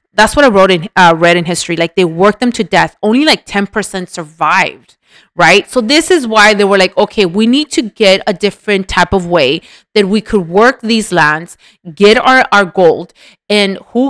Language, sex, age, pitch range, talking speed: English, female, 30-49, 180-230 Hz, 210 wpm